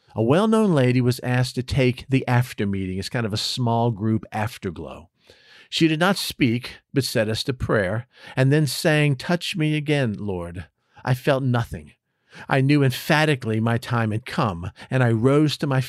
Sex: male